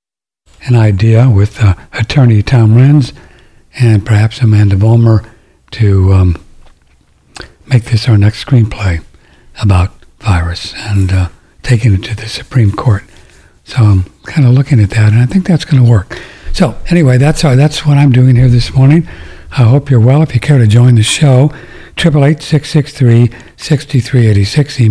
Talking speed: 155 wpm